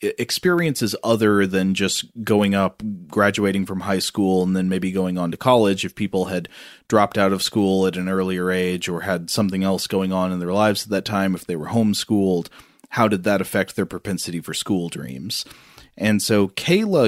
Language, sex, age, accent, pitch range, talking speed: English, male, 30-49, American, 95-115 Hz, 195 wpm